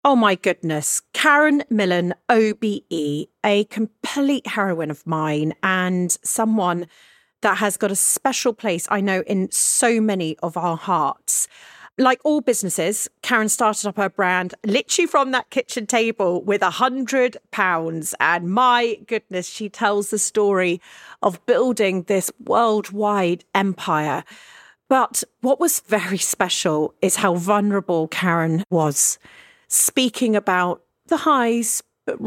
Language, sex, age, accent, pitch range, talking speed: English, female, 40-59, British, 180-240 Hz, 130 wpm